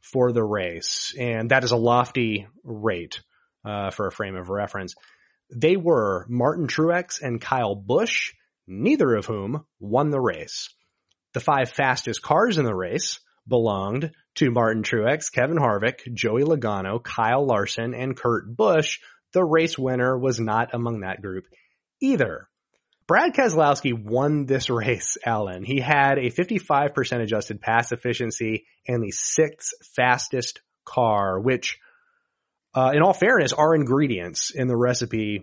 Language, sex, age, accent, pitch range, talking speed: English, male, 30-49, American, 115-150 Hz, 145 wpm